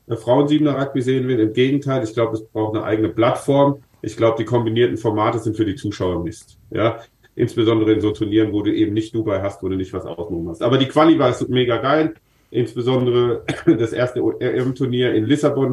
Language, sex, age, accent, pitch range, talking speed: German, male, 40-59, German, 110-130 Hz, 195 wpm